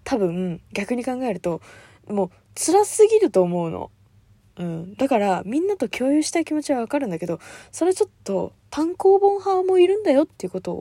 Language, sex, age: Japanese, female, 20-39